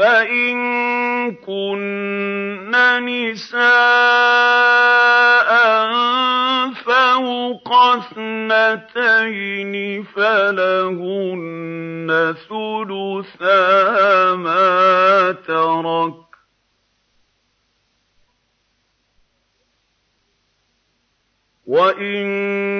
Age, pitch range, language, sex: 50-69, 185-240 Hz, Arabic, male